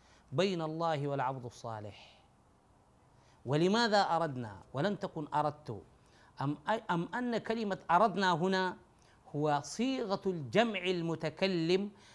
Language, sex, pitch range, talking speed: Arabic, male, 130-185 Hz, 95 wpm